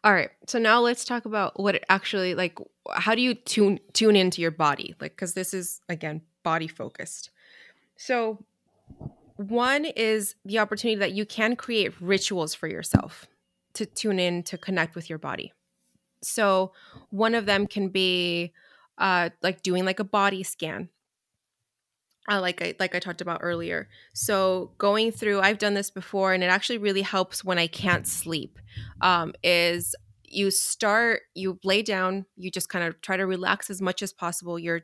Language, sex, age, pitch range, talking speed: English, female, 20-39, 175-205 Hz, 175 wpm